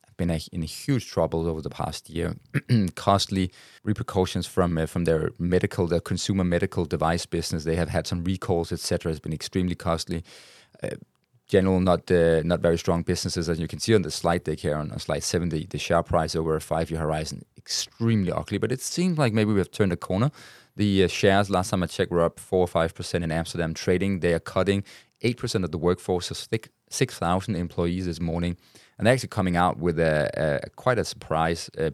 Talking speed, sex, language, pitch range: 210 wpm, male, English, 80-95 Hz